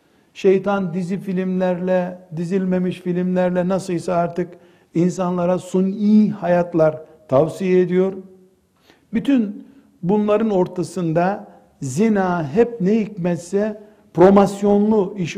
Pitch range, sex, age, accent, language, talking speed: 165-210 Hz, male, 60-79, native, Turkish, 80 wpm